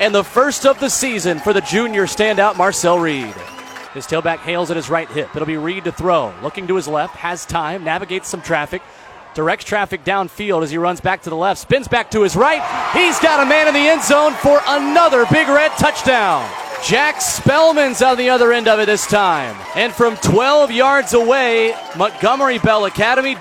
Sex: male